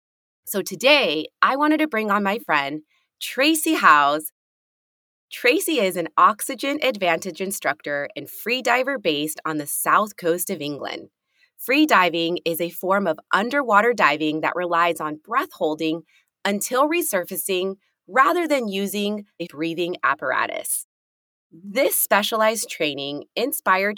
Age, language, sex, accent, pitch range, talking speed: 20-39, English, female, American, 160-235 Hz, 125 wpm